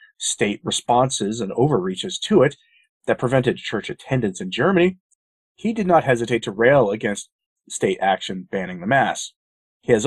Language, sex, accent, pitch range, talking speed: English, male, American, 120-185 Hz, 155 wpm